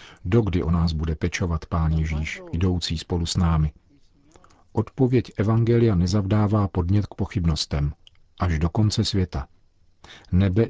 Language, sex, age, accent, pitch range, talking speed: Czech, male, 50-69, native, 85-100 Hz, 125 wpm